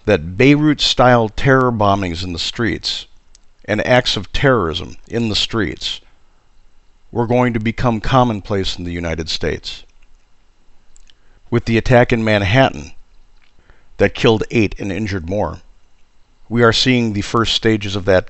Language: English